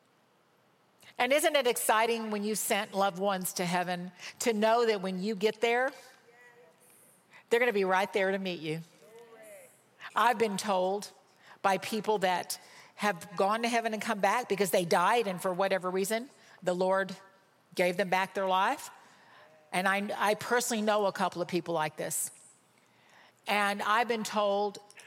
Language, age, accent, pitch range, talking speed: English, 50-69, American, 195-245 Hz, 165 wpm